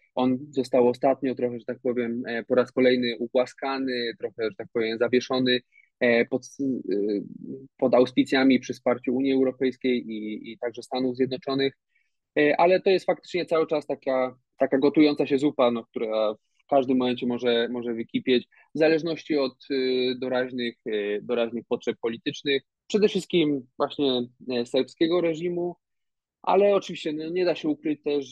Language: Polish